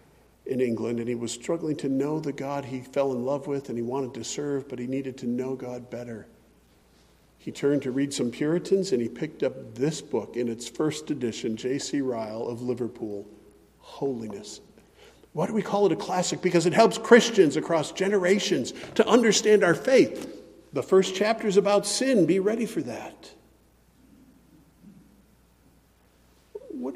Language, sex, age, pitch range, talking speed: English, male, 50-69, 125-205 Hz, 165 wpm